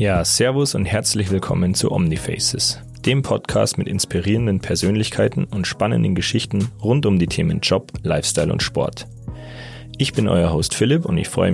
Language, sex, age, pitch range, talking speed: German, male, 30-49, 90-115 Hz, 160 wpm